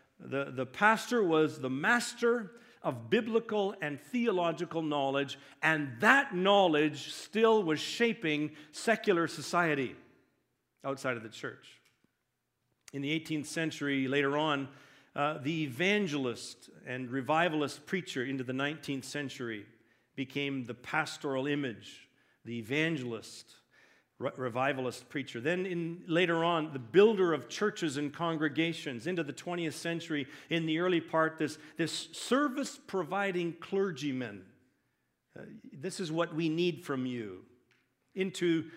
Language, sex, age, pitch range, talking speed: English, male, 50-69, 135-175 Hz, 120 wpm